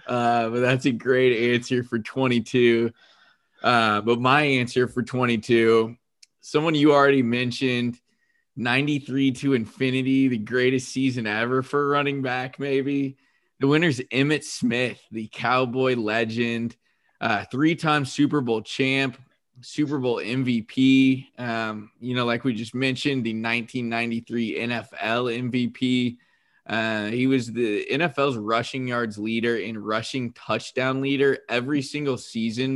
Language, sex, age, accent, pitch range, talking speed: English, male, 20-39, American, 110-130 Hz, 130 wpm